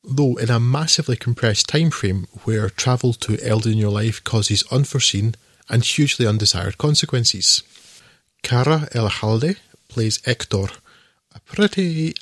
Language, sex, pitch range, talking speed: English, male, 110-140 Hz, 130 wpm